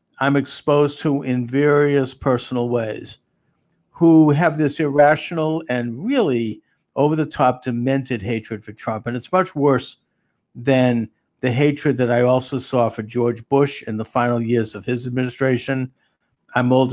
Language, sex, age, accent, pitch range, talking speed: English, male, 50-69, American, 120-145 Hz, 150 wpm